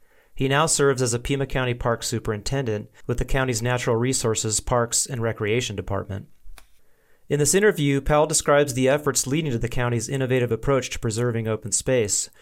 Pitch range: 115-140 Hz